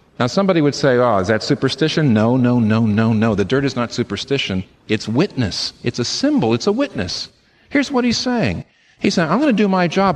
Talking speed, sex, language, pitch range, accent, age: 225 wpm, male, English, 120-195 Hz, American, 50-69